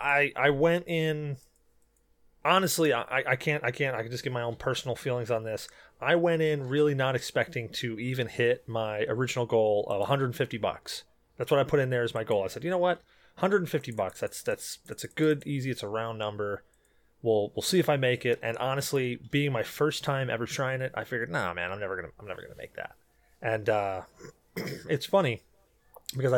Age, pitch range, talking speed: 30-49, 115-150 Hz, 215 wpm